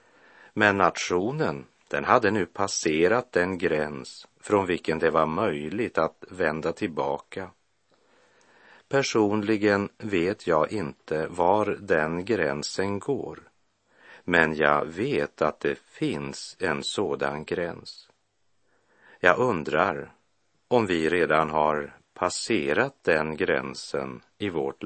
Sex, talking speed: male, 105 wpm